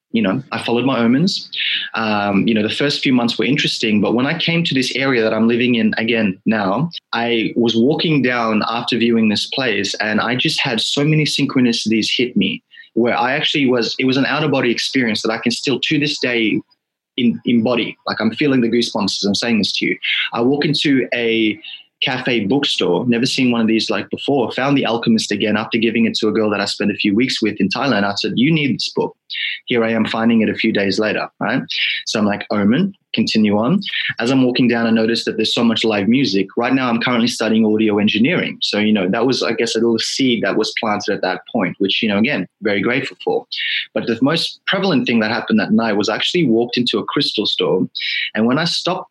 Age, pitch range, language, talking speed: 20-39, 110-130 Hz, English, 235 wpm